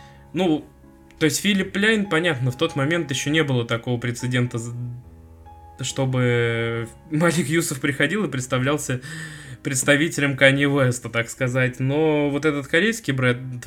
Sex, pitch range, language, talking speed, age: male, 125-160 Hz, Russian, 130 wpm, 20-39